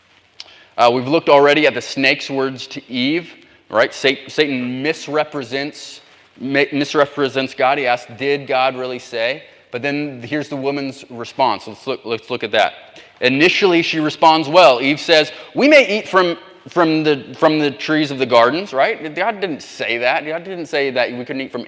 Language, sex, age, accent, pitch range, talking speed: English, male, 30-49, American, 130-170 Hz, 175 wpm